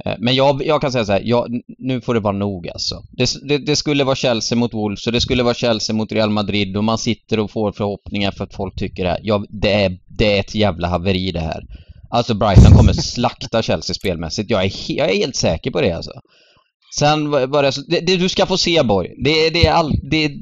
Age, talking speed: 30-49, 235 wpm